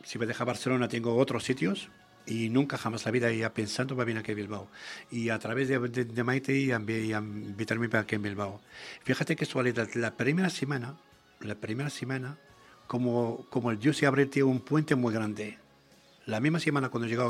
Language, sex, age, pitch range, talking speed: English, male, 60-79, 115-140 Hz, 200 wpm